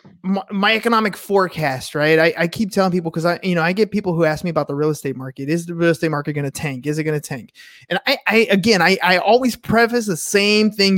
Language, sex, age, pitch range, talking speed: English, male, 20-39, 165-215 Hz, 260 wpm